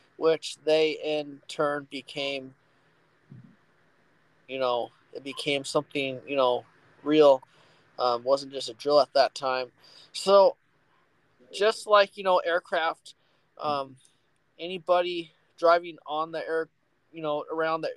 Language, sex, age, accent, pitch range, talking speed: English, male, 20-39, American, 140-170 Hz, 125 wpm